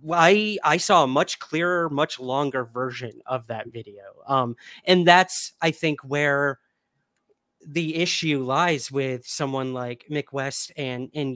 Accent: American